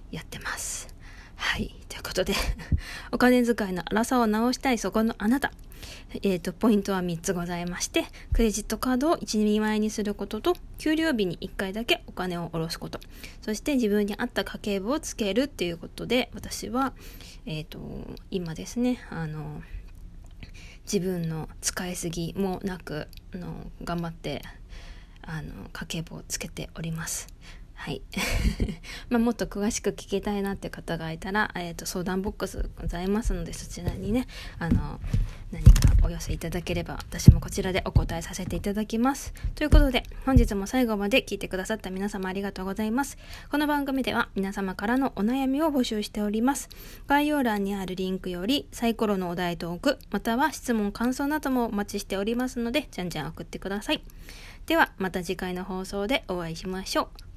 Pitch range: 180-240 Hz